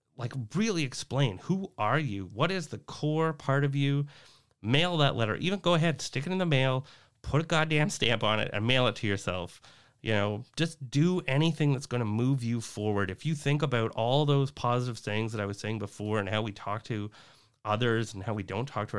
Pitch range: 105-140 Hz